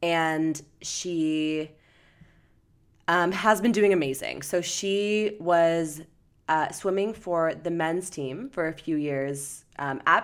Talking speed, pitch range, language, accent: 130 wpm, 140-175 Hz, English, American